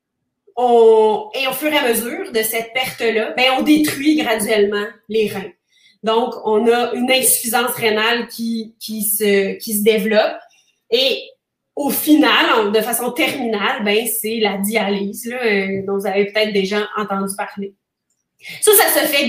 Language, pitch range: French, 215-280 Hz